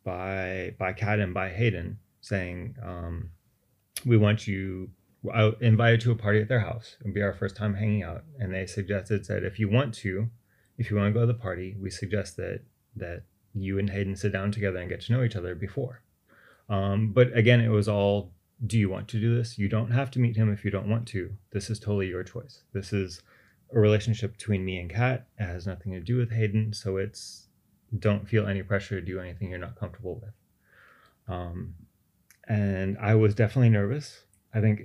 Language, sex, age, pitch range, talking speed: English, male, 30-49, 95-115 Hz, 210 wpm